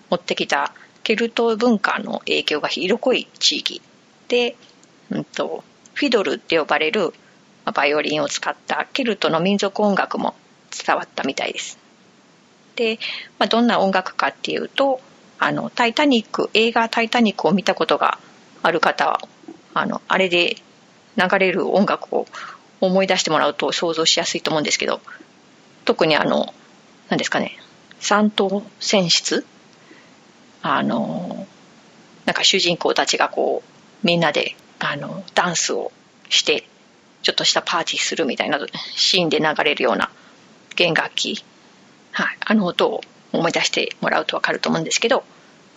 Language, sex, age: Japanese, female, 30-49